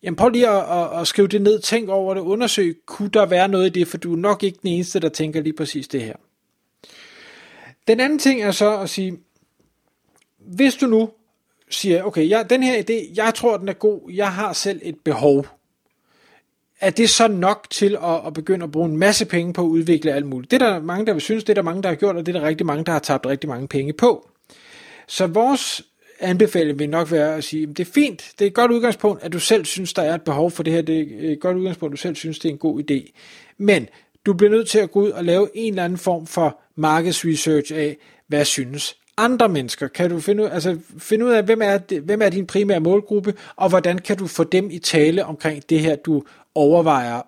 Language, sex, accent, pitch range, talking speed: Danish, male, native, 160-210 Hz, 245 wpm